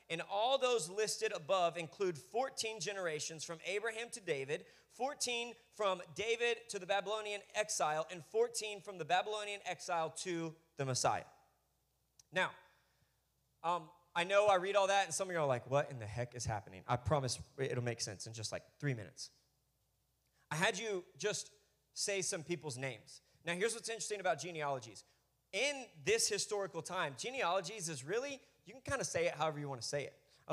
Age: 20-39